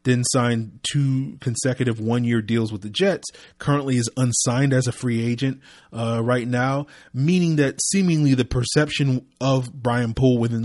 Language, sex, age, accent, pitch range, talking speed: English, male, 30-49, American, 115-140 Hz, 165 wpm